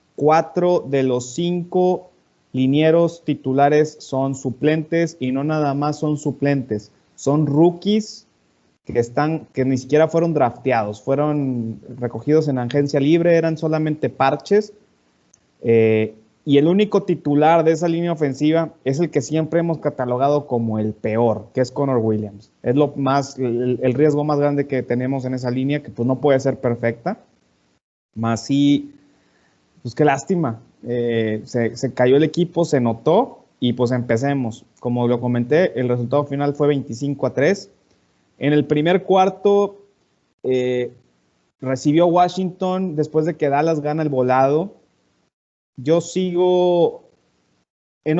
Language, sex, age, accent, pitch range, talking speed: Spanish, male, 30-49, Mexican, 125-160 Hz, 145 wpm